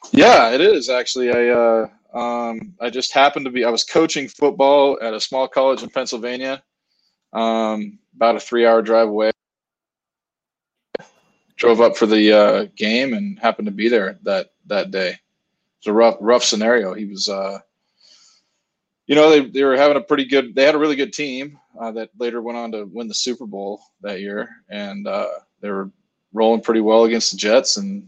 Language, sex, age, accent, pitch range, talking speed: English, male, 20-39, American, 110-135 Hz, 190 wpm